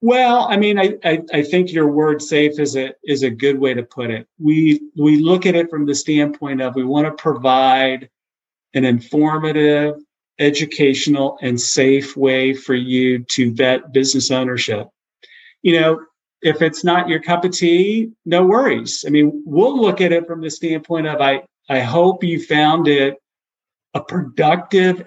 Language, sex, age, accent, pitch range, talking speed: English, male, 50-69, American, 145-175 Hz, 175 wpm